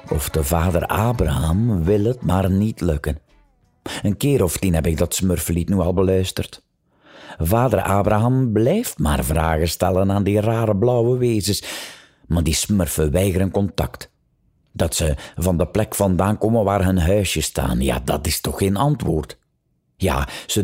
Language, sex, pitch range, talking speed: Dutch, male, 85-120 Hz, 160 wpm